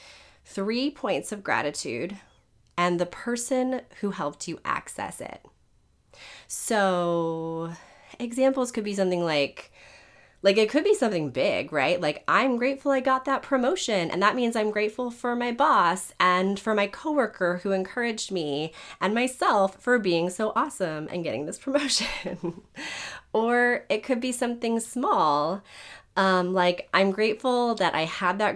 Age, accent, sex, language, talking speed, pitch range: 30-49, American, female, English, 150 wpm, 170-235 Hz